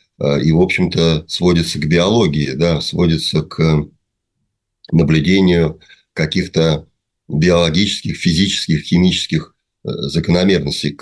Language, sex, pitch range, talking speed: Russian, male, 80-95 Hz, 75 wpm